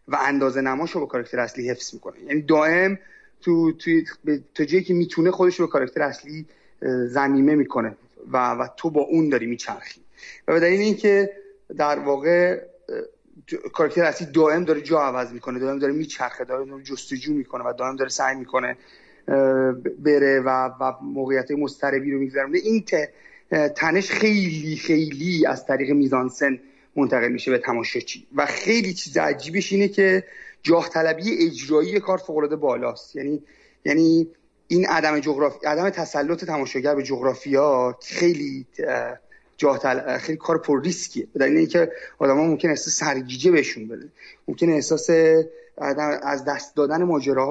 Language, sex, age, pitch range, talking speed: Persian, male, 30-49, 135-175 Hz, 150 wpm